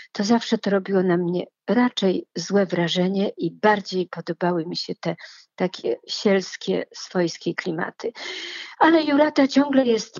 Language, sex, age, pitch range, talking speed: Polish, female, 50-69, 185-230 Hz, 135 wpm